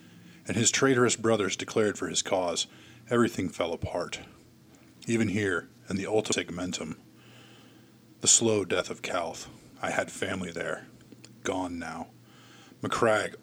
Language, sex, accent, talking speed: English, male, American, 130 wpm